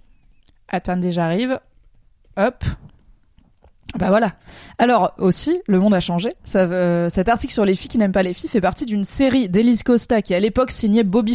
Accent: French